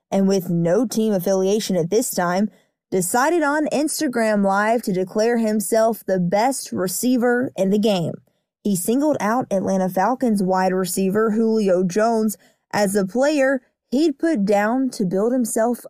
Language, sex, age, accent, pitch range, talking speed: English, female, 20-39, American, 195-245 Hz, 145 wpm